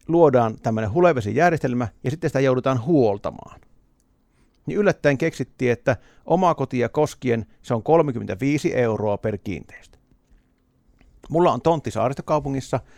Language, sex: Finnish, male